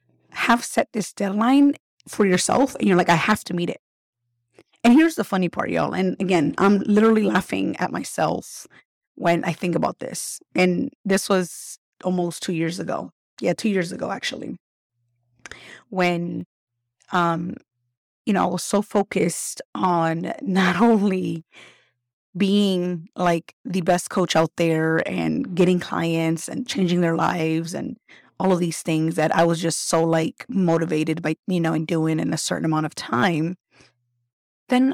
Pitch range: 165-220 Hz